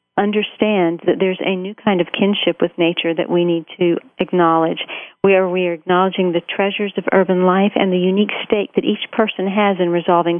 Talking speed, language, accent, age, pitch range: 195 wpm, English, American, 50-69, 175-200 Hz